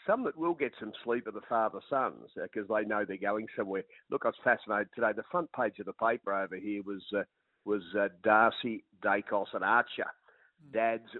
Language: English